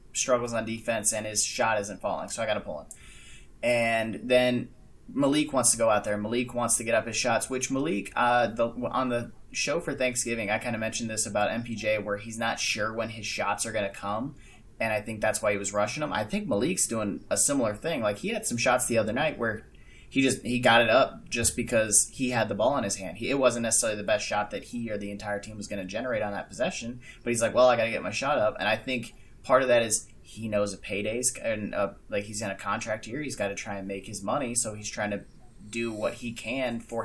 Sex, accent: male, American